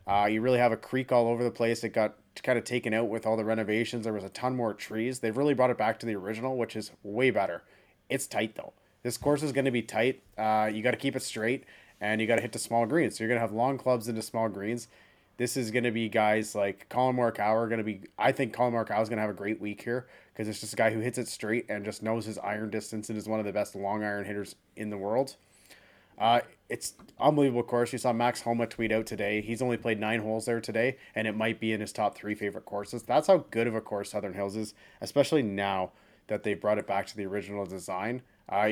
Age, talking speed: 30-49, 270 wpm